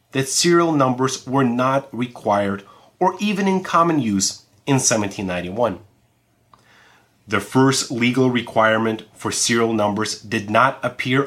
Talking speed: 120 wpm